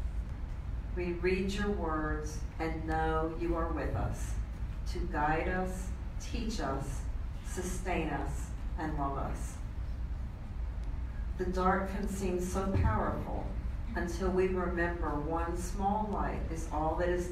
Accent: American